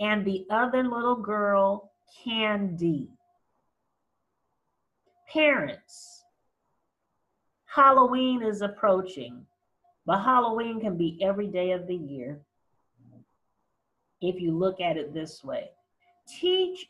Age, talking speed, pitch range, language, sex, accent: 40-59, 95 wpm, 195-275 Hz, English, female, American